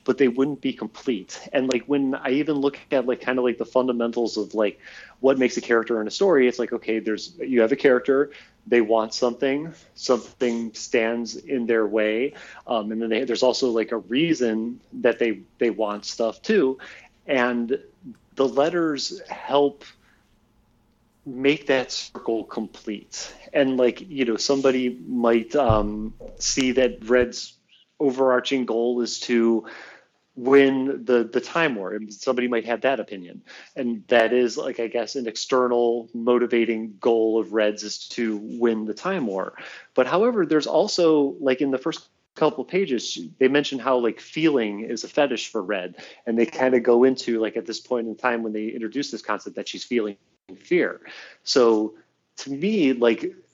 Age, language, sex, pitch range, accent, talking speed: 30-49, English, male, 115-135 Hz, American, 175 wpm